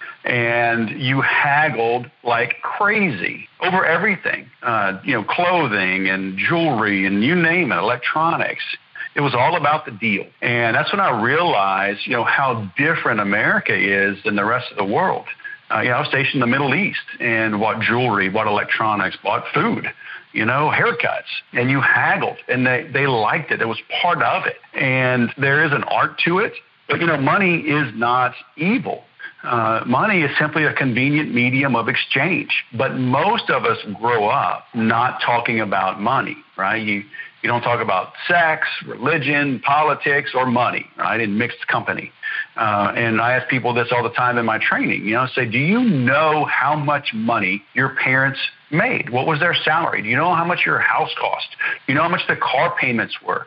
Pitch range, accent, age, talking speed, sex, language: 115-155 Hz, American, 50-69, 190 wpm, male, English